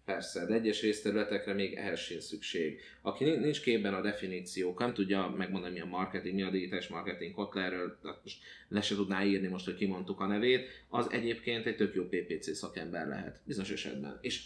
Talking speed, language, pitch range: 185 wpm, Hungarian, 95-105 Hz